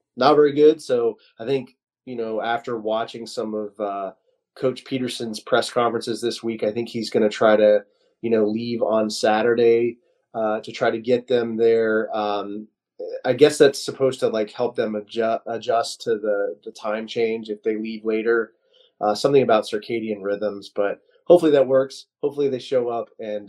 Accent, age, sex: American, 20-39, male